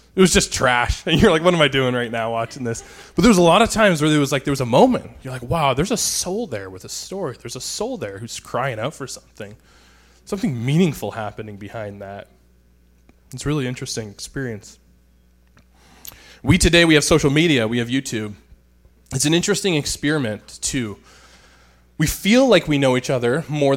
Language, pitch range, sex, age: English, 105-145 Hz, male, 20-39